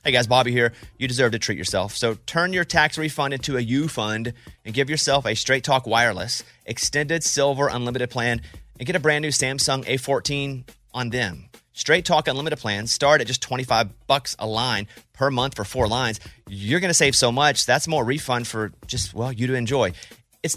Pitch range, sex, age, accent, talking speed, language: 120-165 Hz, male, 30-49, American, 200 wpm, English